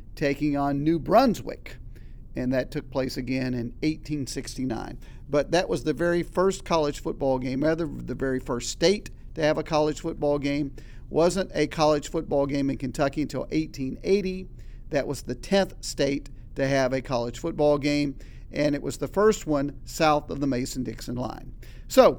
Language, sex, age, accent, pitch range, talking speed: English, male, 50-69, American, 130-170 Hz, 175 wpm